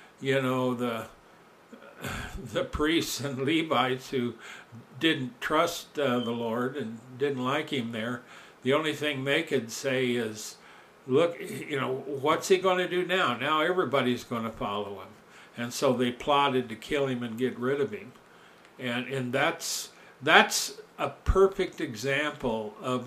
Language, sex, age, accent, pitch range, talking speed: English, male, 60-79, American, 120-140 Hz, 155 wpm